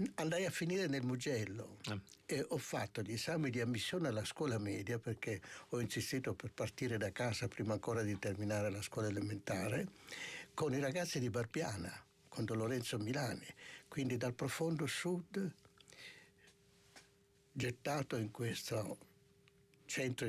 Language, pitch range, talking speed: Italian, 110-135 Hz, 135 wpm